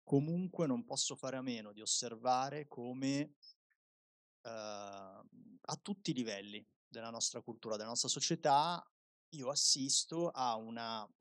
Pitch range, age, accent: 120-165 Hz, 20-39, native